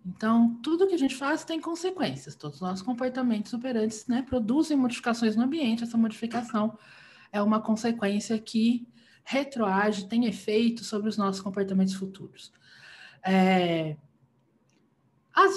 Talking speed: 125 wpm